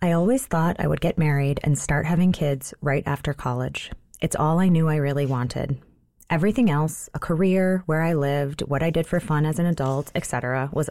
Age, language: 30-49, English